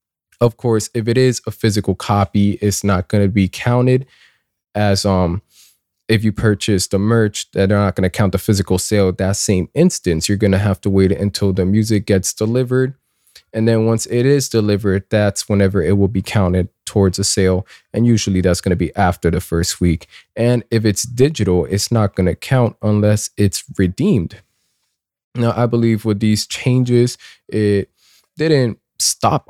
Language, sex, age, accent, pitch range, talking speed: English, male, 20-39, American, 95-115 Hz, 185 wpm